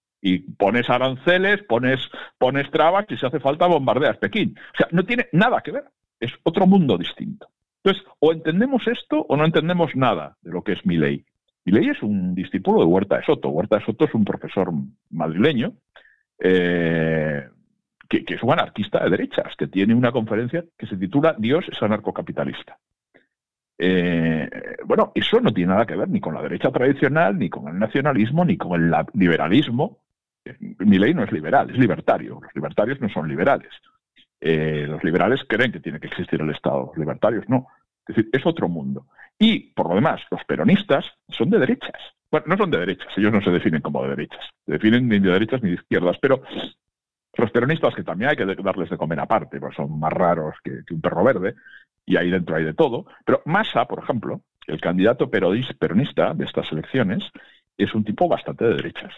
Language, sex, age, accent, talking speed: Spanish, male, 60-79, Spanish, 195 wpm